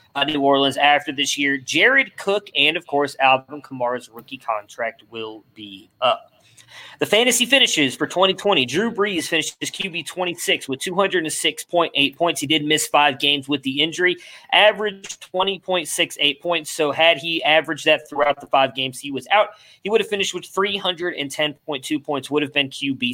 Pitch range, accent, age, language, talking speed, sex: 135-175 Hz, American, 20-39, English, 165 wpm, male